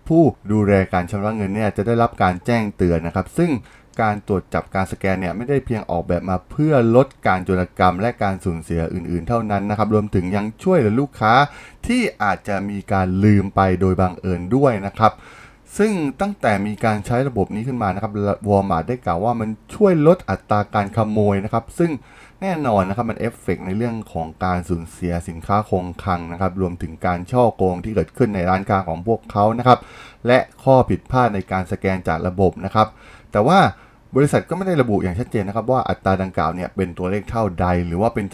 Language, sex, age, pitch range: Thai, male, 20-39, 95-120 Hz